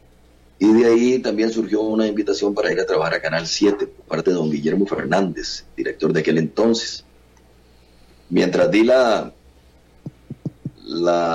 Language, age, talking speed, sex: Spanish, 30-49, 150 wpm, male